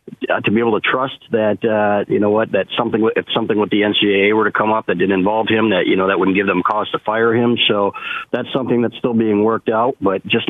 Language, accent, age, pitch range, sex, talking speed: English, American, 40-59, 95-110 Hz, male, 265 wpm